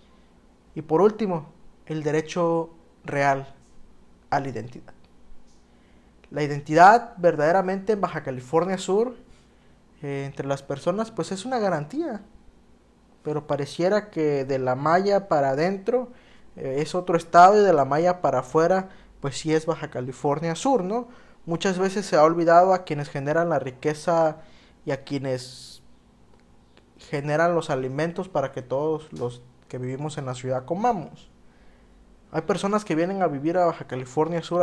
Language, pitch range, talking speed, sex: Spanish, 135-180 Hz, 145 wpm, male